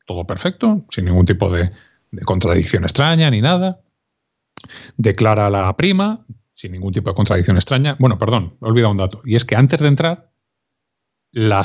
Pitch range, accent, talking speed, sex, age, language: 105-160 Hz, Spanish, 175 wpm, male, 30-49, Spanish